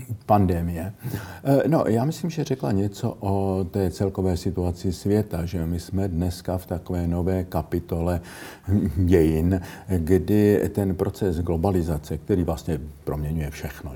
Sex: male